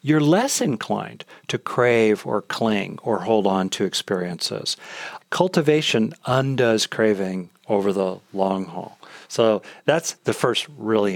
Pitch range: 100-155 Hz